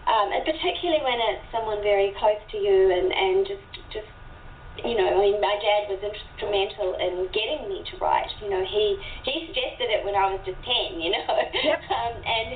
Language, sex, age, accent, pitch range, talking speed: English, female, 40-59, Australian, 185-310 Hz, 195 wpm